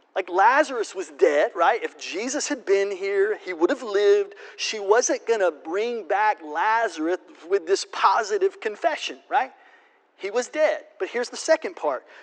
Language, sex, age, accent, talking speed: English, male, 40-59, American, 165 wpm